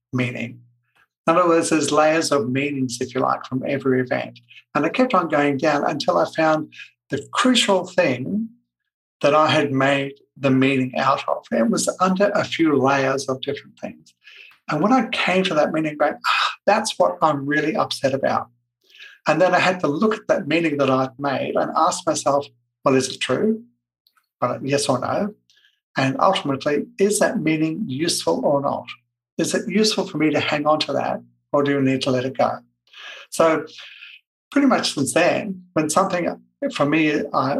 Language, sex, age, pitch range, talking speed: English, male, 60-79, 130-175 Hz, 185 wpm